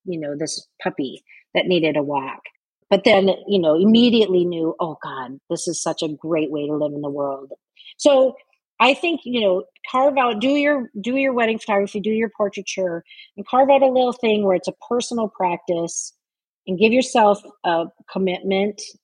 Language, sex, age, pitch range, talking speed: English, female, 40-59, 170-210 Hz, 185 wpm